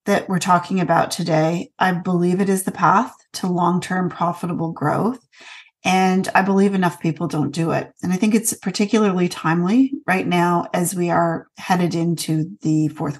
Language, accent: English, American